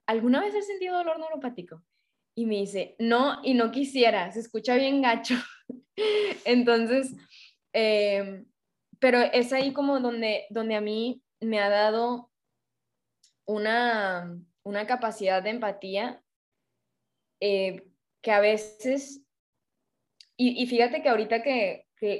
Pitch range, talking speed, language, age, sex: 200-245 Hz, 125 wpm, Spanish, 10-29, female